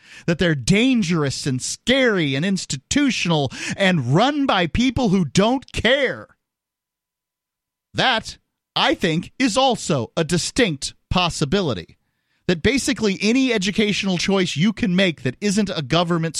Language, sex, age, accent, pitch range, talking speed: English, male, 40-59, American, 120-185 Hz, 125 wpm